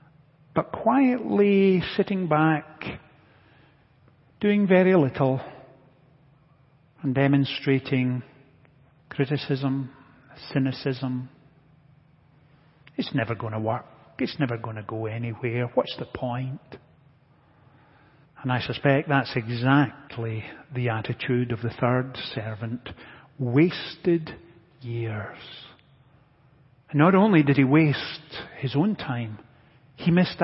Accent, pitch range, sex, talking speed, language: British, 130-160 Hz, male, 95 wpm, English